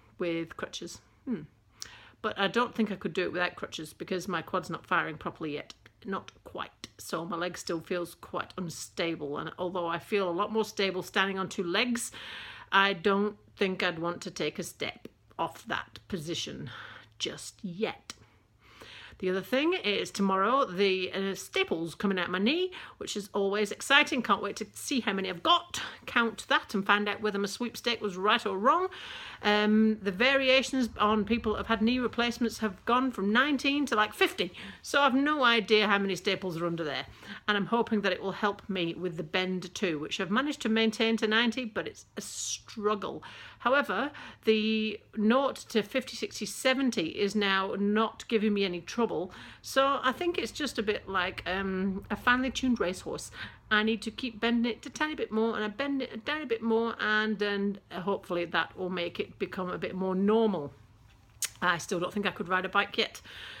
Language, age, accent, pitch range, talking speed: English, 40-59, British, 185-230 Hz, 195 wpm